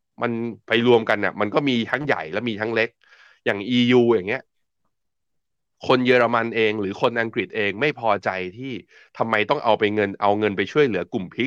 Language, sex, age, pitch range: Thai, male, 20-39, 100-125 Hz